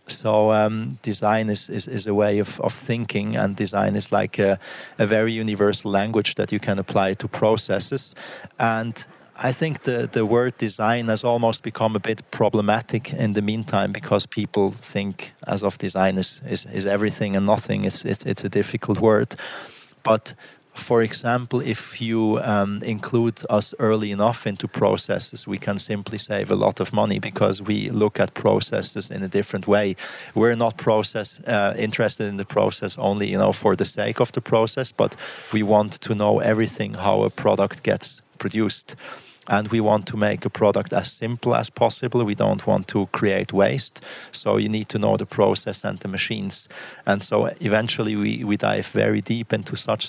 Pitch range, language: 105-115 Hz, English